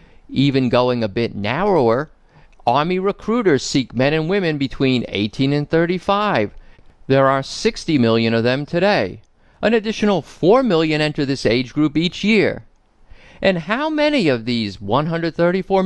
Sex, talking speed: male, 145 wpm